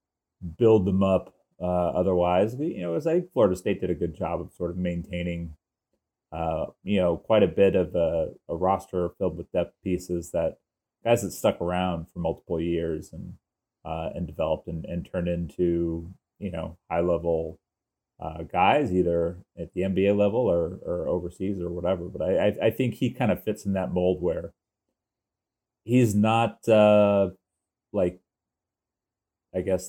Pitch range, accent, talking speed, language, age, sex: 85-100 Hz, American, 165 wpm, English, 30-49, male